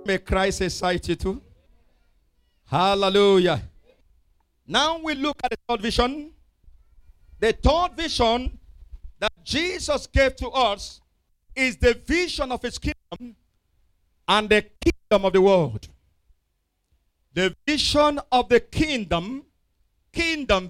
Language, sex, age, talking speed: English, male, 50-69, 115 wpm